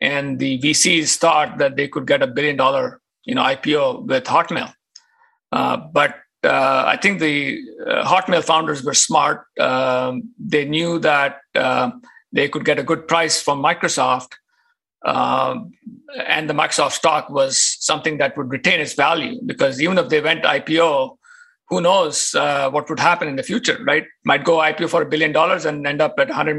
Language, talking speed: English, 180 wpm